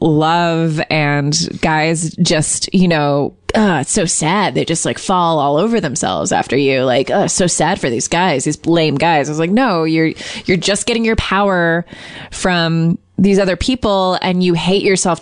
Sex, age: female, 20-39